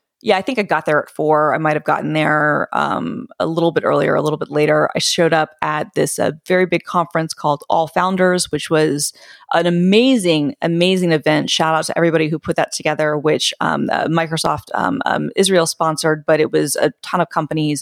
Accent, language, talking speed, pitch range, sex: American, English, 210 wpm, 155-170 Hz, female